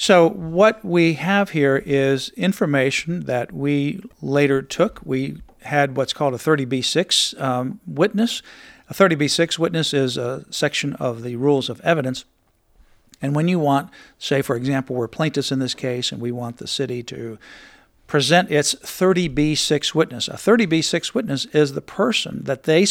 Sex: male